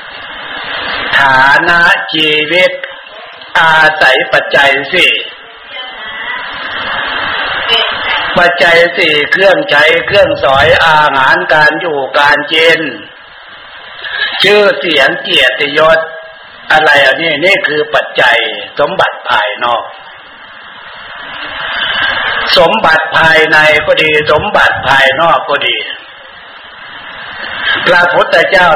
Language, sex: Thai, male